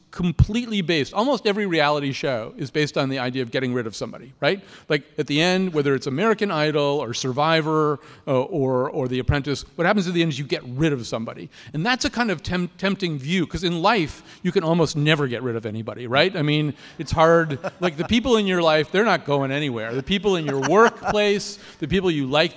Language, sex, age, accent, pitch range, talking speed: English, male, 40-59, American, 140-190 Hz, 225 wpm